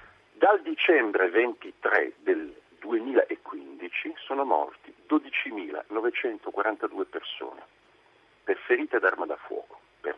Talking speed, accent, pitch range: 90 wpm, native, 360-430 Hz